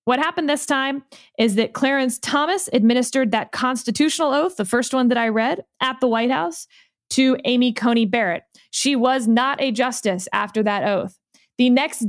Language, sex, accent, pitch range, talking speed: English, female, American, 230-285 Hz, 180 wpm